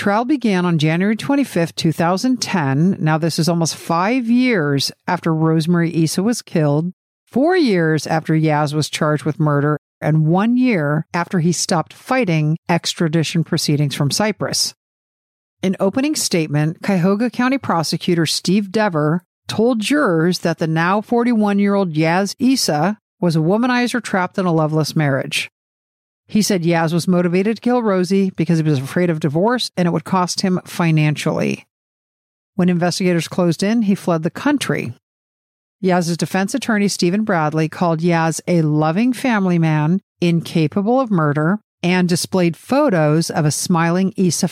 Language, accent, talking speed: English, American, 145 wpm